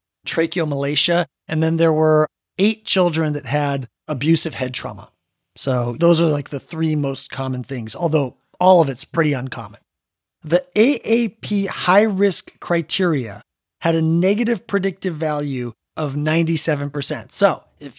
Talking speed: 135 wpm